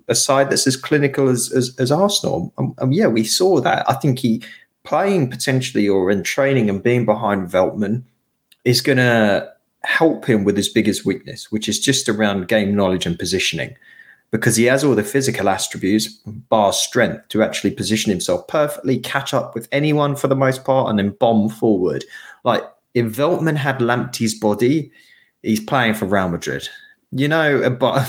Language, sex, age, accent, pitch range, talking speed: English, male, 20-39, British, 110-155 Hz, 180 wpm